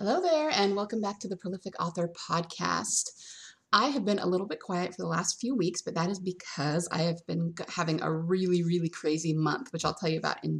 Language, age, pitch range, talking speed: English, 30-49, 160-185 Hz, 230 wpm